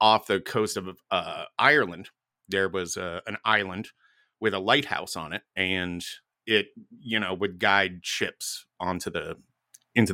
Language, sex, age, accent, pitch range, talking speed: English, male, 30-49, American, 95-120 Hz, 155 wpm